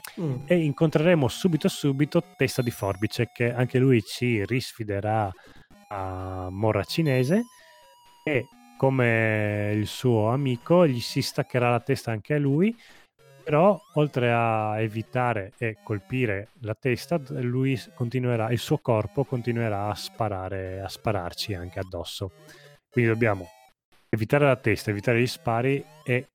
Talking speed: 130 wpm